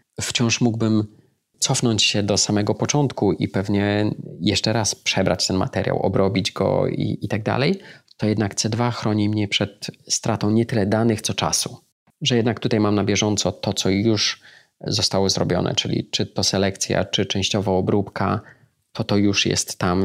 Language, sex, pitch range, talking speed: Polish, male, 100-120 Hz, 165 wpm